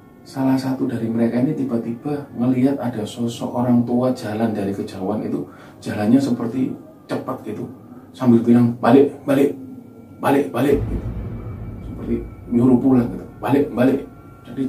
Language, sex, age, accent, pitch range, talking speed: Indonesian, male, 30-49, native, 115-130 Hz, 140 wpm